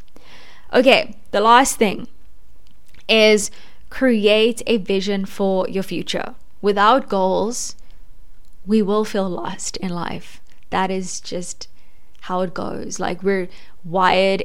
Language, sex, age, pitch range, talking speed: English, female, 10-29, 190-220 Hz, 115 wpm